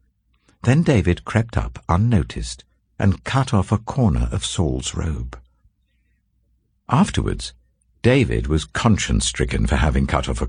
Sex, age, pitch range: male, 60-79, 75-110 Hz